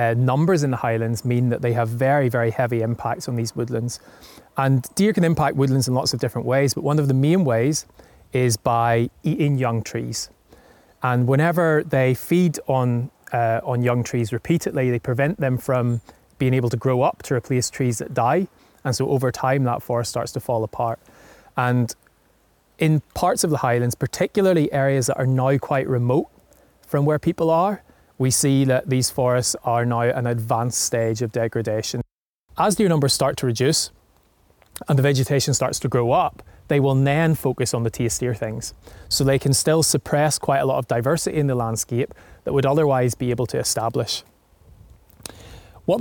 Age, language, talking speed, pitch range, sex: 20-39, English, 185 wpm, 120-140 Hz, male